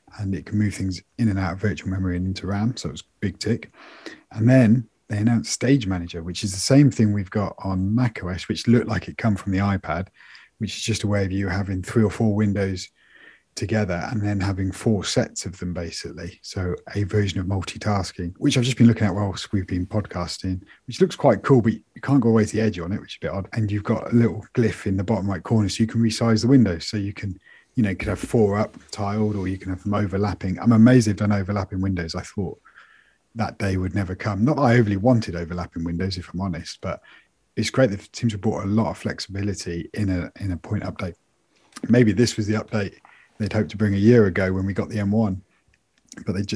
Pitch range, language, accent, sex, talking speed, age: 95-110 Hz, English, British, male, 245 wpm, 40-59